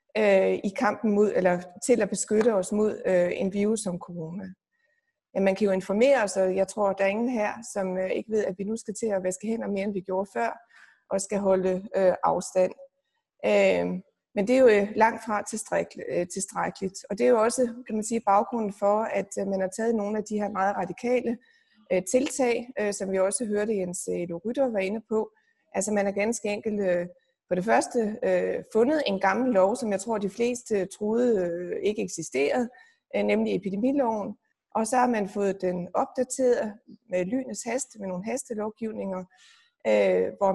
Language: Danish